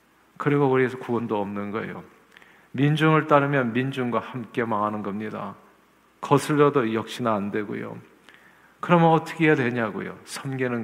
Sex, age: male, 50-69